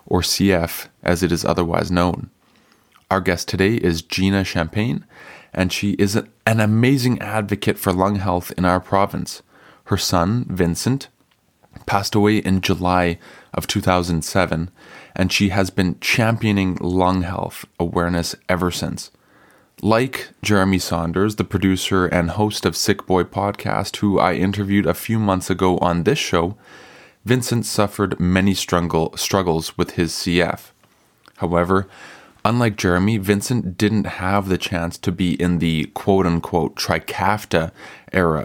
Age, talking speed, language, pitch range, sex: 20-39, 135 wpm, English, 90-100 Hz, male